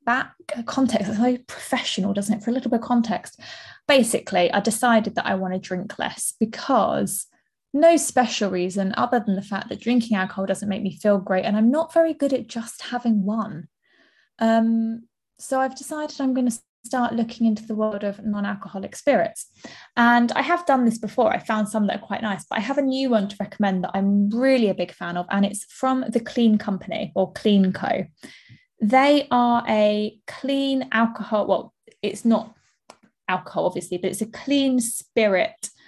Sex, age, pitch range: female, 20-39, 195-245 Hz